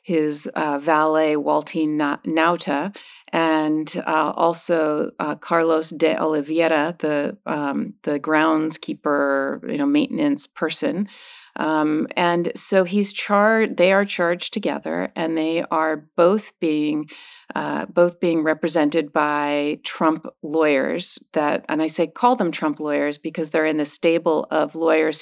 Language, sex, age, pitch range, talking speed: English, female, 40-59, 155-185 Hz, 135 wpm